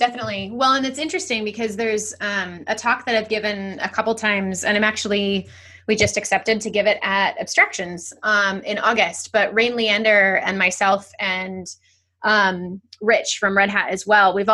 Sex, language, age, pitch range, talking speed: female, English, 20-39, 195-220 Hz, 180 wpm